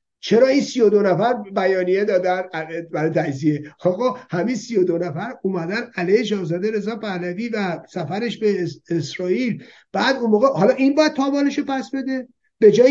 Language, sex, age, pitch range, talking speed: Persian, male, 50-69, 180-245 Hz, 160 wpm